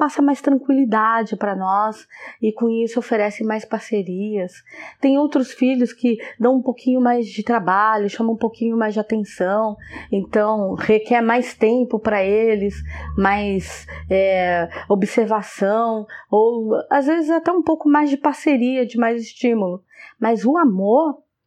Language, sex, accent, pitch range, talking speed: Portuguese, female, Brazilian, 200-245 Hz, 140 wpm